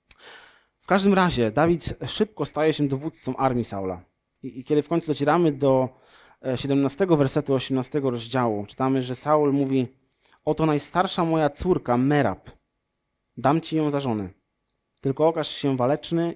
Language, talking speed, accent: Polish, 140 wpm, native